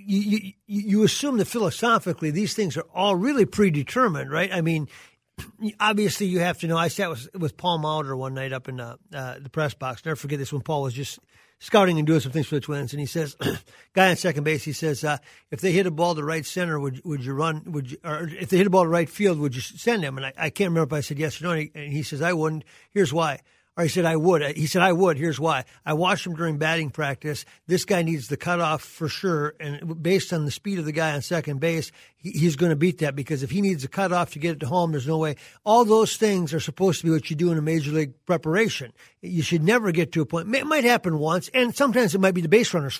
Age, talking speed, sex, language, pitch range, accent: 50-69, 275 wpm, male, English, 150-185 Hz, American